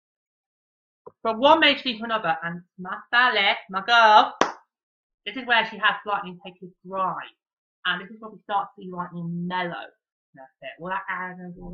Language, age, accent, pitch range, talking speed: English, 30-49, British, 180-225 Hz, 180 wpm